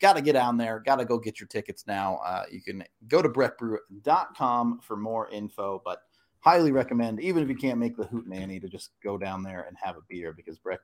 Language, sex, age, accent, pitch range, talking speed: English, male, 30-49, American, 100-135 Hz, 235 wpm